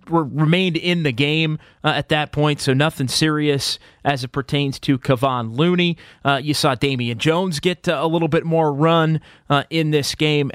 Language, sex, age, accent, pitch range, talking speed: English, male, 30-49, American, 135-170 Hz, 190 wpm